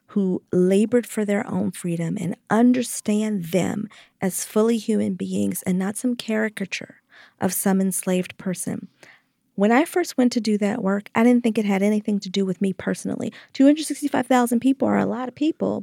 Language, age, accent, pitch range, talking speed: English, 40-59, American, 200-250 Hz, 180 wpm